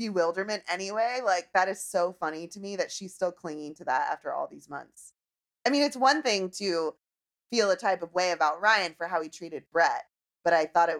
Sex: female